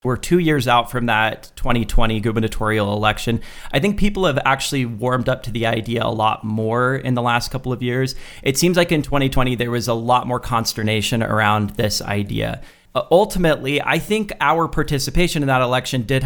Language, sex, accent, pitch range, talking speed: English, male, American, 120-145 Hz, 190 wpm